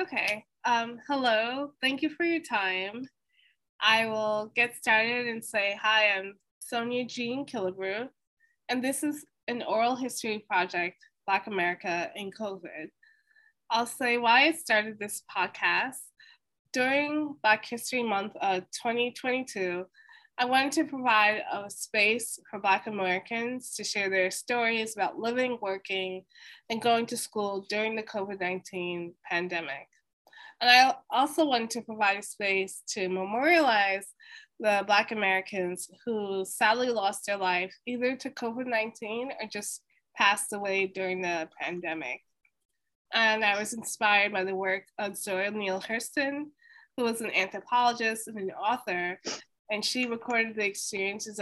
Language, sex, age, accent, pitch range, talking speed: English, female, 20-39, American, 195-245 Hz, 140 wpm